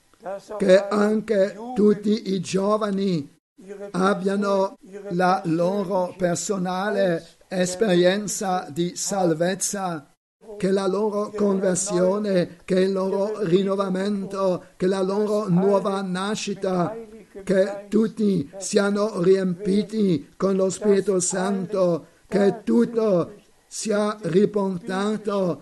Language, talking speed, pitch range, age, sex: Italian, 85 wpm, 185-200 Hz, 50-69, male